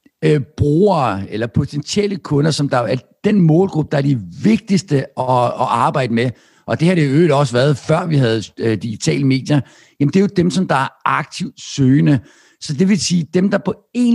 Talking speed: 200 wpm